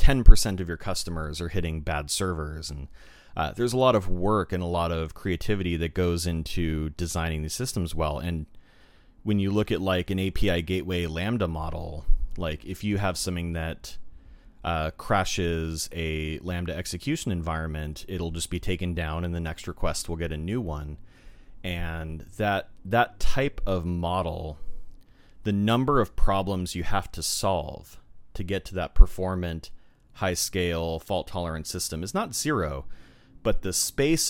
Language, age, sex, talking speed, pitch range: English, 30-49, male, 165 wpm, 80-100 Hz